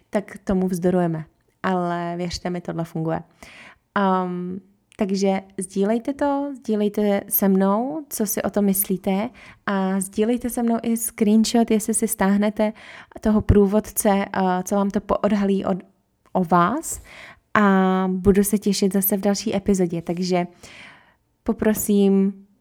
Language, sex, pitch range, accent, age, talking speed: Czech, female, 180-205 Hz, native, 20-39, 120 wpm